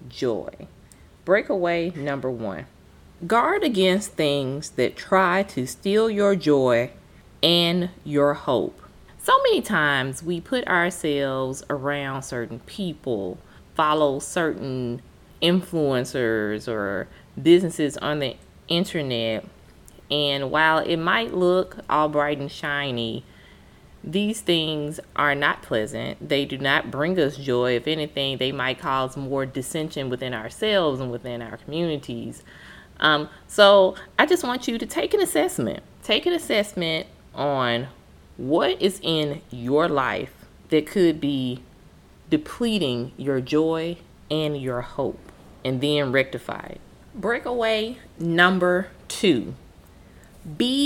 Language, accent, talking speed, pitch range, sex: English, American, 120 wpm, 130-180 Hz, female